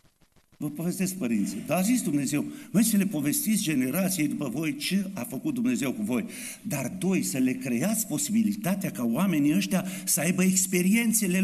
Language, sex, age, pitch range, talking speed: Romanian, male, 50-69, 180-240 Hz, 170 wpm